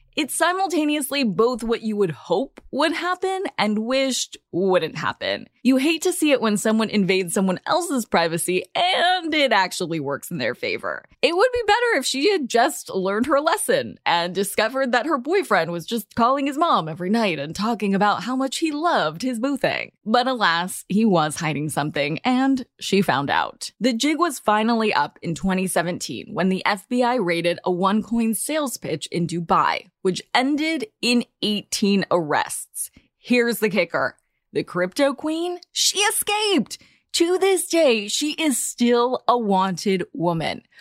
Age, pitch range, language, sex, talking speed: 20-39, 190-280 Hz, English, female, 165 wpm